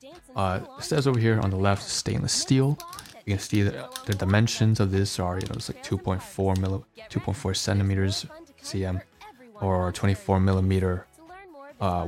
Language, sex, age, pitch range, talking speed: English, male, 20-39, 95-115 Hz, 155 wpm